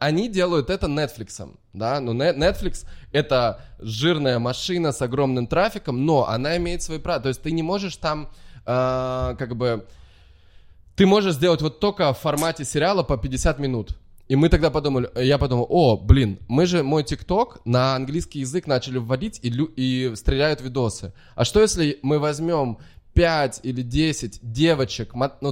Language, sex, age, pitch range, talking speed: Russian, male, 20-39, 120-160 Hz, 165 wpm